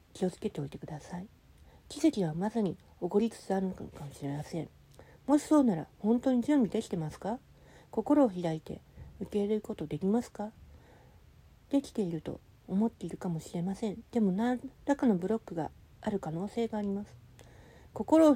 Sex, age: female, 40-59